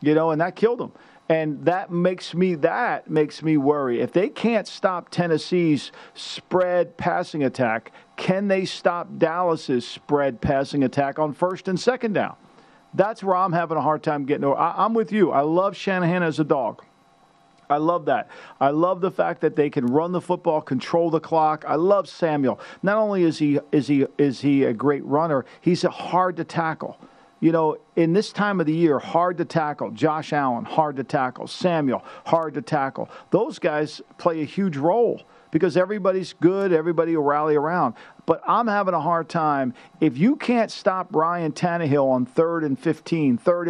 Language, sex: English, male